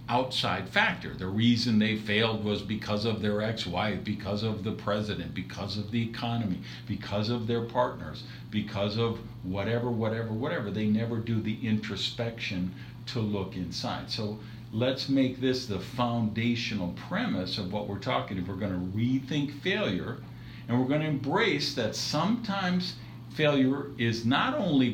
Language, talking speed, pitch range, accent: English, 155 wpm, 105-125 Hz, American